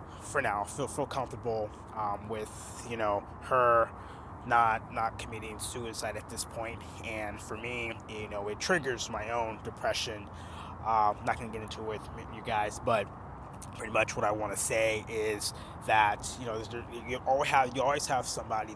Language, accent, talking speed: English, American, 175 wpm